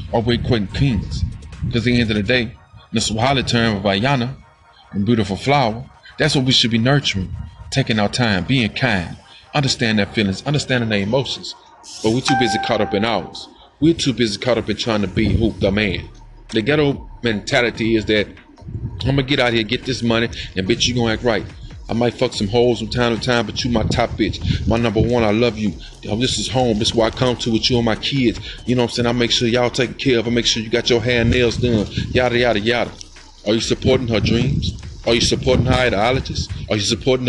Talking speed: 240 wpm